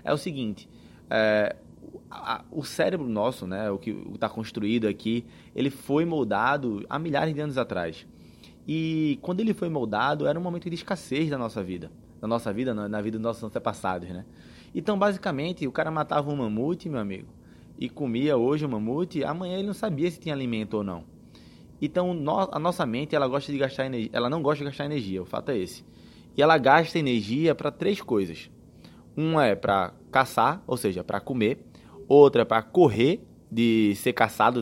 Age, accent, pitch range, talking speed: 20-39, Brazilian, 110-155 Hz, 190 wpm